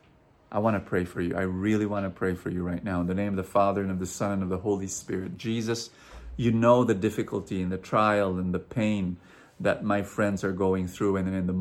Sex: male